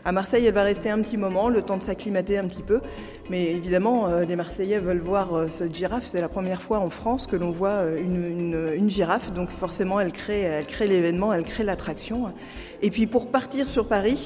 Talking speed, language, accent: 220 wpm, French, French